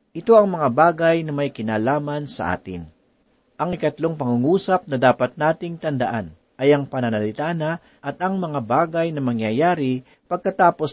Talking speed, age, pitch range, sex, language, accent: 145 wpm, 40-59, 125-165 Hz, male, Filipino, native